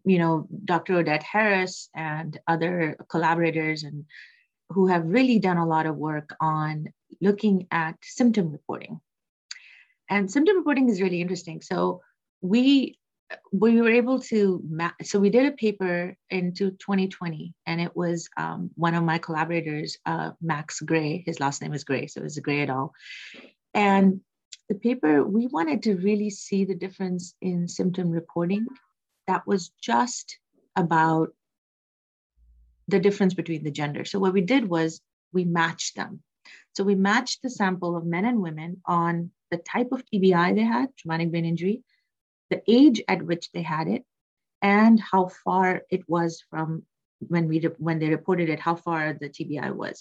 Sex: female